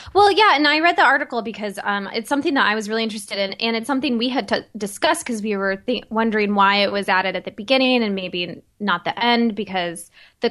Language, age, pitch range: English, 10-29, 200-250 Hz